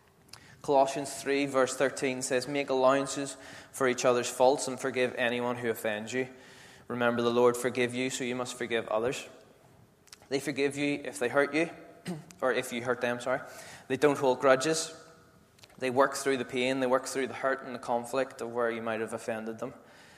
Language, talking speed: English, 190 wpm